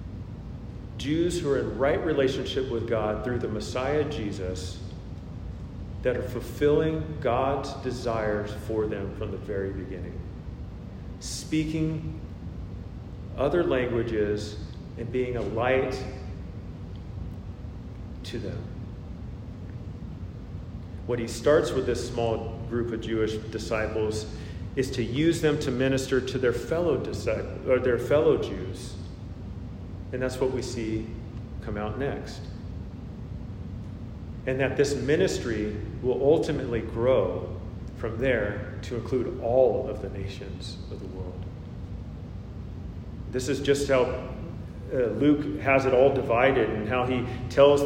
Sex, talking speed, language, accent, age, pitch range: male, 120 wpm, English, American, 40-59, 95-125 Hz